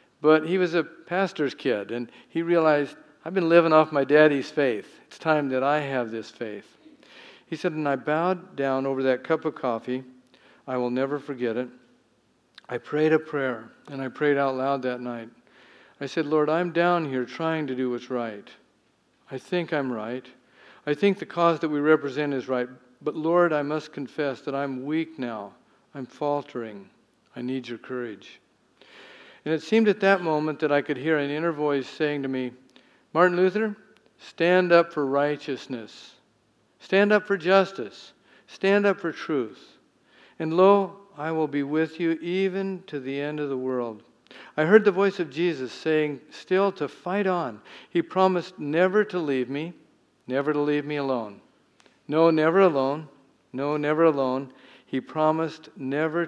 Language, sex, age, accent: English, male, 50-69, American